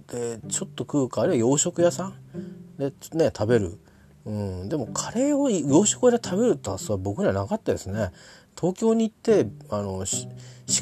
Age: 40-59